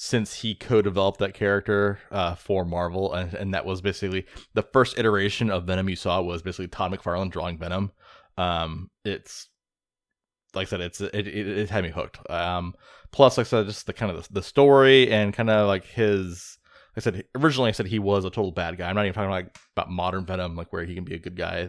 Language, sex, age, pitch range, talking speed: English, male, 20-39, 90-105 Hz, 230 wpm